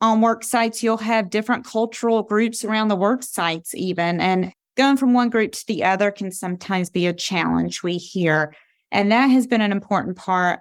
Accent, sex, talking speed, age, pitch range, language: American, female, 200 wpm, 30-49, 180-220 Hz, English